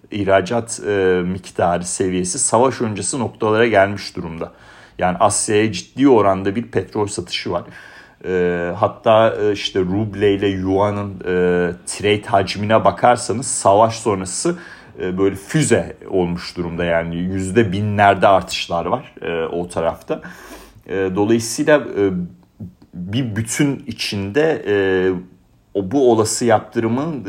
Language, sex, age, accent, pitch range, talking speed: Turkish, male, 40-59, native, 95-115 Hz, 120 wpm